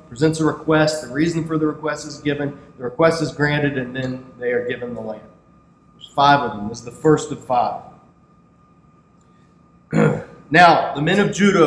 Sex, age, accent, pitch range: male, 40-59, American, 140-175 Hz